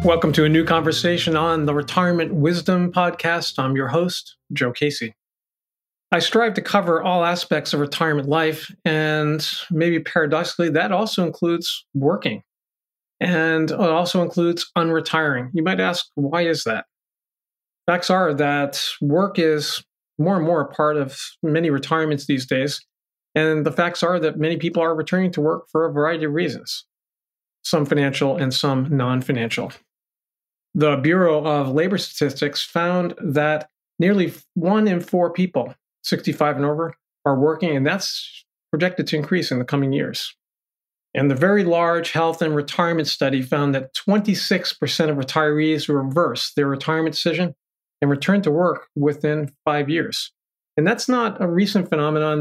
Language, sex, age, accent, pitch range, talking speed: English, male, 40-59, American, 145-170 Hz, 155 wpm